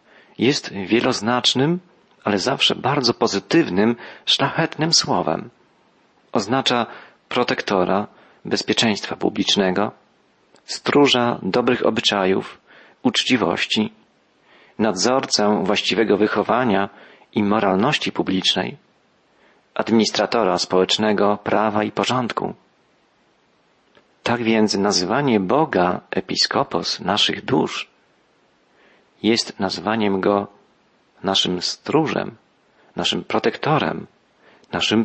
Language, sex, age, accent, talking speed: Polish, male, 40-59, native, 70 wpm